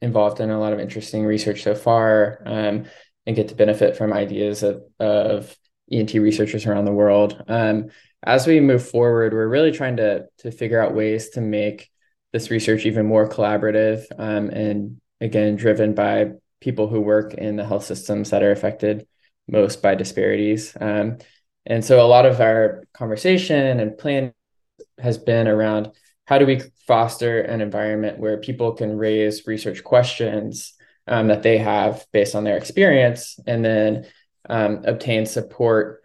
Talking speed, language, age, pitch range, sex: 165 wpm, English, 20-39, 105-115 Hz, male